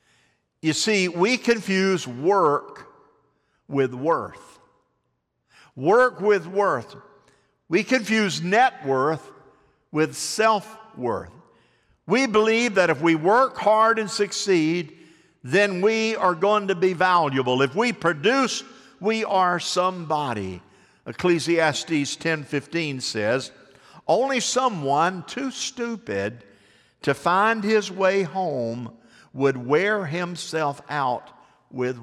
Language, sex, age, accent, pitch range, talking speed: English, male, 50-69, American, 140-195 Hz, 105 wpm